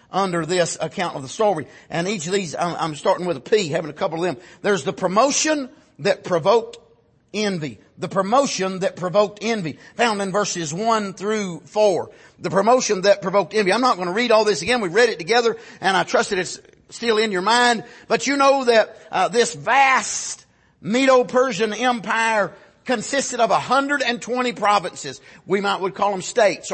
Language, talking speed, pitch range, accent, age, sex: English, 185 wpm, 195-255 Hz, American, 50-69, male